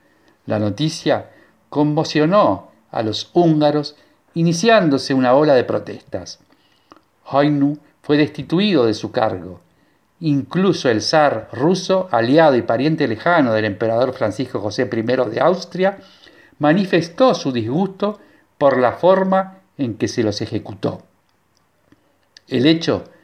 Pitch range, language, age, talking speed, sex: 115-165 Hz, Spanish, 50-69, 115 wpm, male